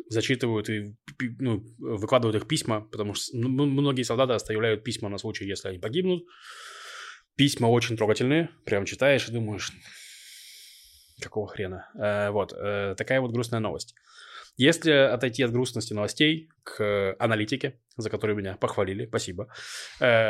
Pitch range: 110-140 Hz